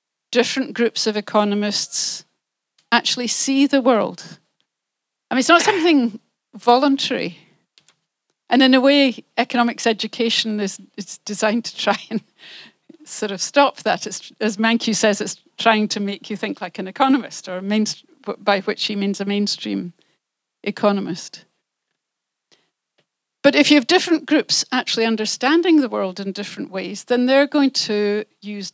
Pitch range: 200-255 Hz